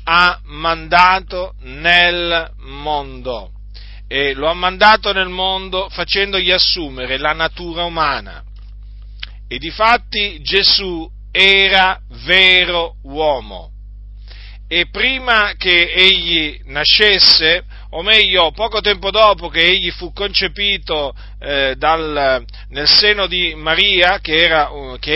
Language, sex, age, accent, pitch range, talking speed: Italian, male, 40-59, native, 130-190 Hz, 105 wpm